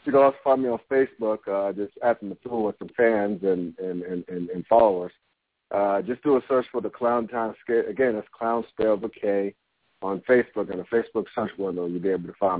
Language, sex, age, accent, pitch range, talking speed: English, male, 50-69, American, 100-120 Hz, 235 wpm